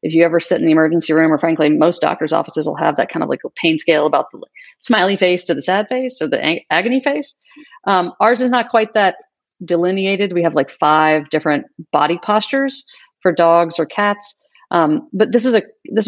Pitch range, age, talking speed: 165-245 Hz, 40-59, 215 wpm